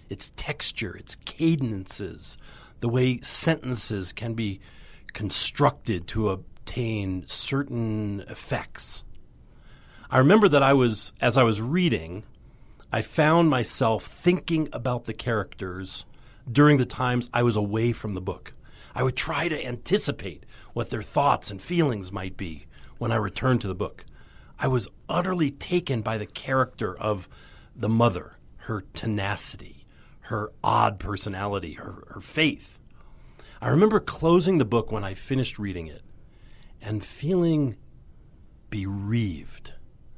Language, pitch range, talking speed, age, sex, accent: English, 95-130 Hz, 130 wpm, 40-59, male, American